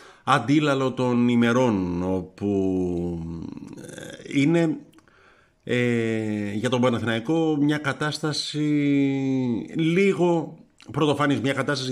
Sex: male